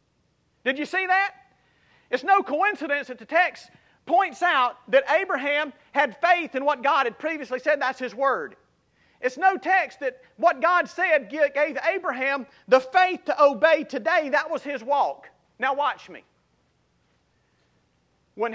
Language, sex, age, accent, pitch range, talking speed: English, male, 40-59, American, 245-330 Hz, 150 wpm